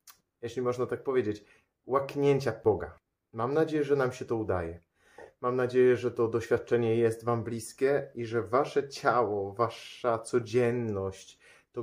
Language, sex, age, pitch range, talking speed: Polish, male, 30-49, 105-130 Hz, 140 wpm